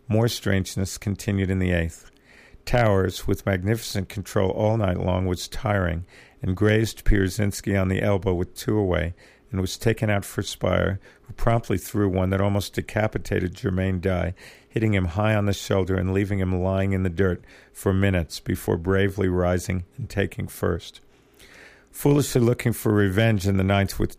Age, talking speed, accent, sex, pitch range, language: 50-69, 170 wpm, American, male, 95-110 Hz, English